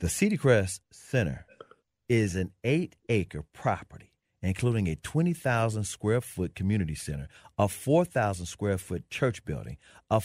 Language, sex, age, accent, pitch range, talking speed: English, male, 40-59, American, 105-135 Hz, 105 wpm